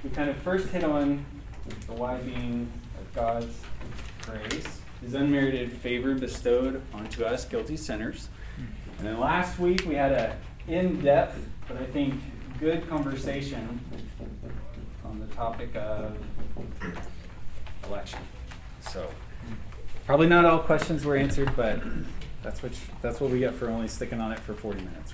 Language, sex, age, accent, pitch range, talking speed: English, male, 20-39, American, 110-145 Hz, 145 wpm